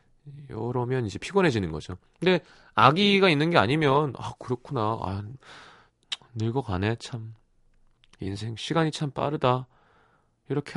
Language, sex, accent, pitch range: Korean, male, native, 95-145 Hz